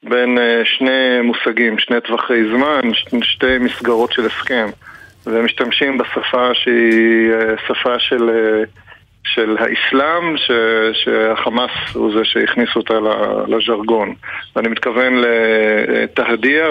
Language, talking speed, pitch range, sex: Hebrew, 95 wpm, 115-125 Hz, male